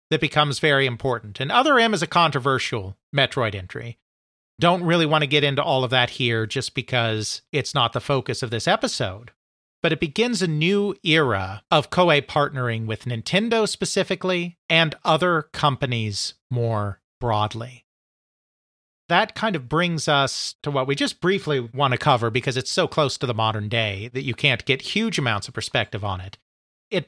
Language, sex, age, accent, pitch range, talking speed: English, male, 40-59, American, 115-150 Hz, 175 wpm